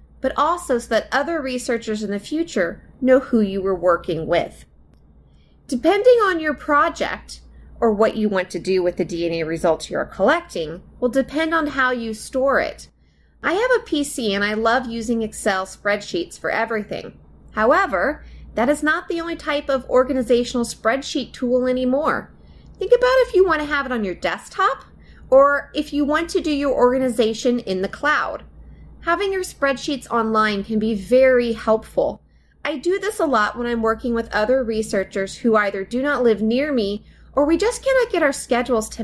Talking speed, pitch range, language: 180 wpm, 215-295 Hz, English